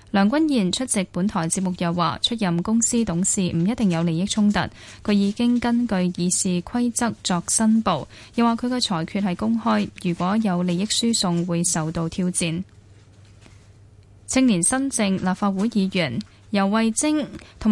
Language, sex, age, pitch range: Chinese, female, 10-29, 175-220 Hz